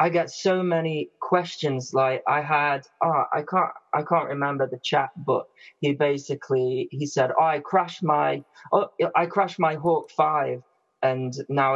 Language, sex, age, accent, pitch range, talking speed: English, male, 20-39, British, 130-165 Hz, 170 wpm